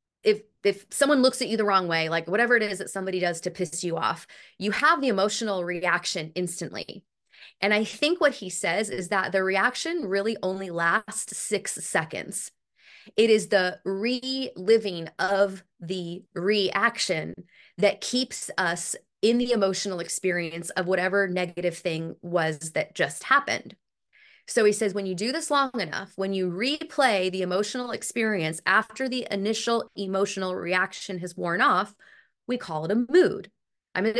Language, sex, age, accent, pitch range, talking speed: English, female, 20-39, American, 185-225 Hz, 165 wpm